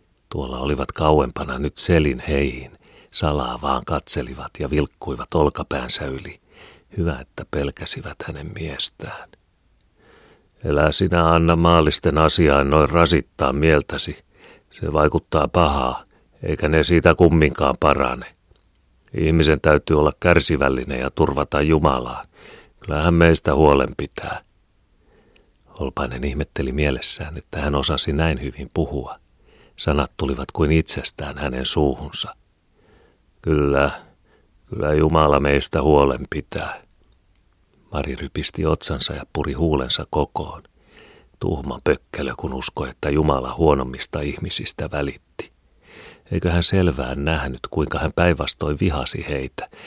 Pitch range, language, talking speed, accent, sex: 70-80 Hz, Finnish, 110 wpm, native, male